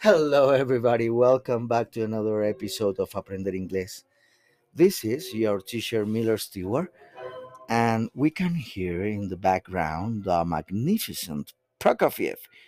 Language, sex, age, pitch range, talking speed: English, male, 50-69, 115-150 Hz, 125 wpm